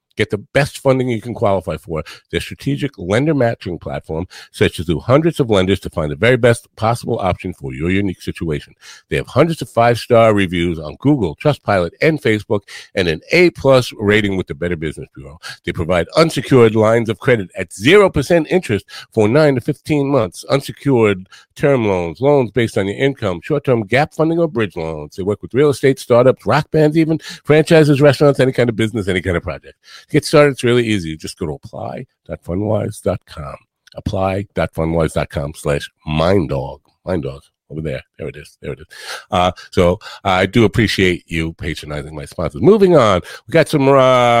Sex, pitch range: male, 95-135 Hz